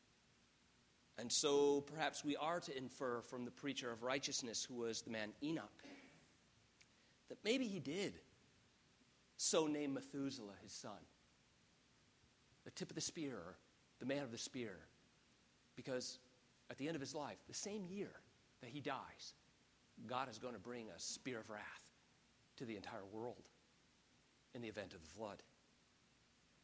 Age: 40-59